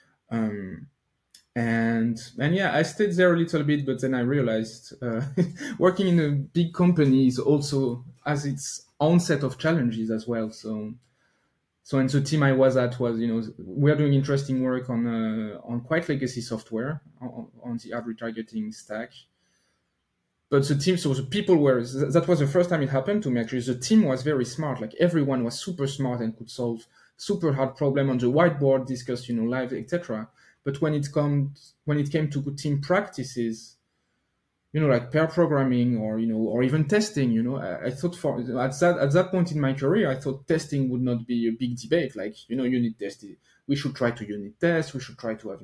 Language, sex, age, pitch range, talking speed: English, male, 20-39, 120-155 Hz, 210 wpm